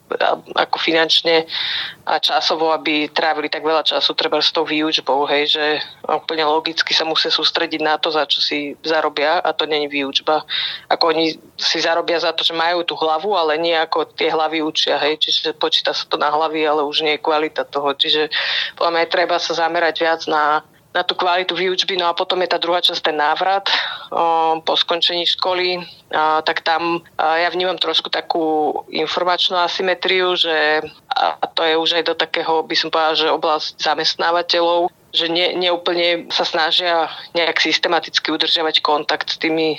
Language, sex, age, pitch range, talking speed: Slovak, female, 30-49, 155-170 Hz, 175 wpm